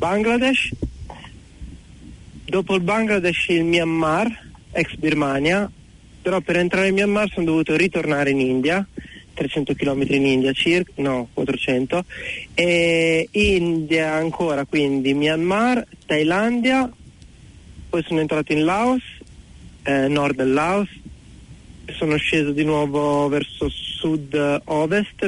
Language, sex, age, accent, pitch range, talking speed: Italian, male, 40-59, native, 135-180 Hz, 110 wpm